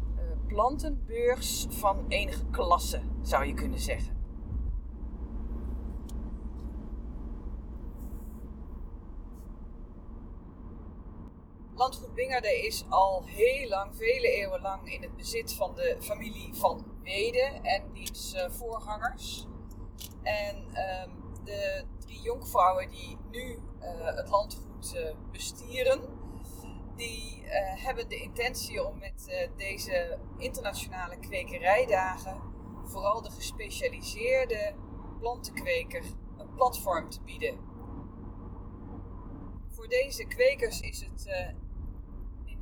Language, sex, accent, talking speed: Dutch, female, Dutch, 95 wpm